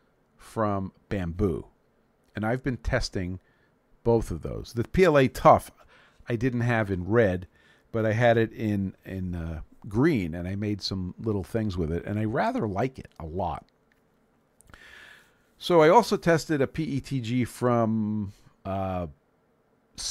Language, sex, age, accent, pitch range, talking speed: English, male, 50-69, American, 95-125 Hz, 145 wpm